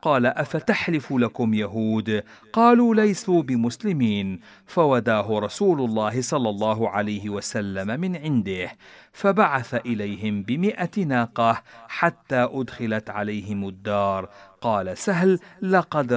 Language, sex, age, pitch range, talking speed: Arabic, male, 50-69, 105-160 Hz, 100 wpm